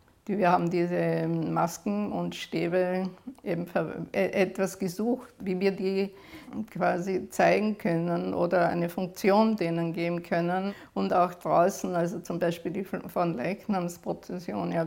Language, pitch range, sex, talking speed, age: German, 170-195 Hz, female, 130 wpm, 50-69